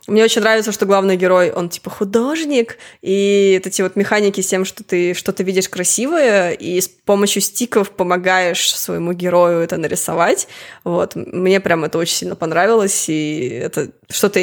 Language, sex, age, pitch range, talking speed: Russian, female, 20-39, 180-220 Hz, 170 wpm